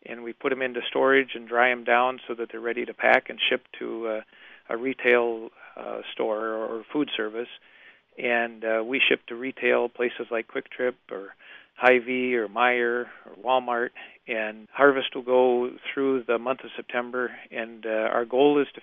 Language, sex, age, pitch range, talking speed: English, male, 40-59, 115-125 Hz, 185 wpm